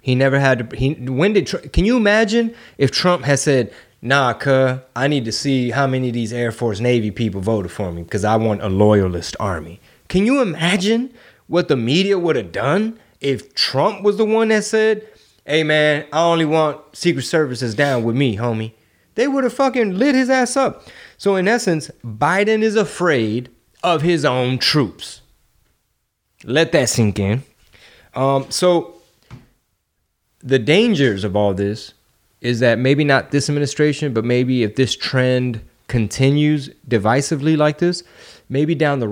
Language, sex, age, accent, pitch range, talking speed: English, male, 20-39, American, 115-160 Hz, 170 wpm